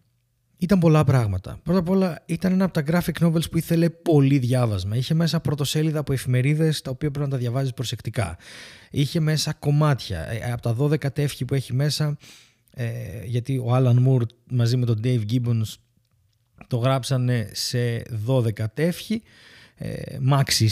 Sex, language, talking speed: male, Greek, 160 wpm